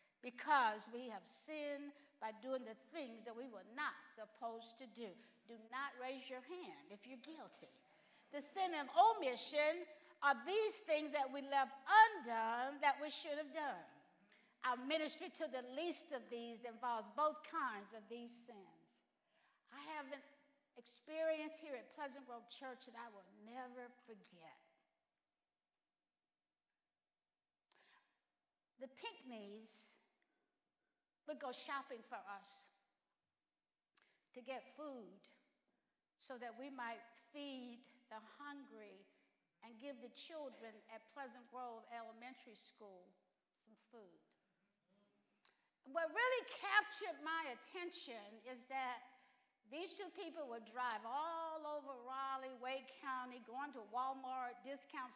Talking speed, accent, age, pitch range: 125 wpm, American, 60-79, 235-300 Hz